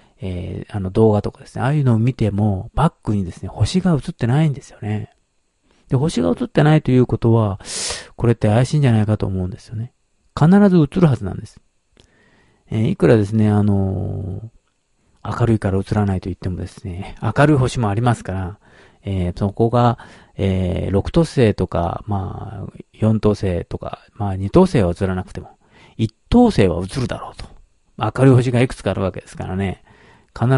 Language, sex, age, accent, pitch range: Japanese, male, 40-59, native, 95-125 Hz